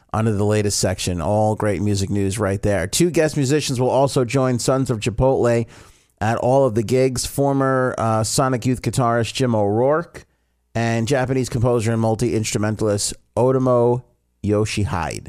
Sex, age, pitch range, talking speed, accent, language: male, 40-59, 95-125 Hz, 150 wpm, American, English